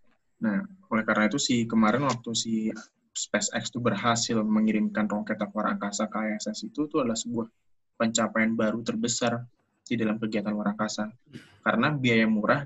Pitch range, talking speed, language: 110-125 Hz, 145 wpm, Indonesian